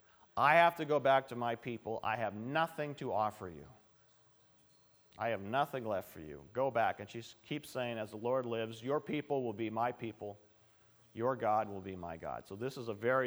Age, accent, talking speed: 40-59, American, 215 wpm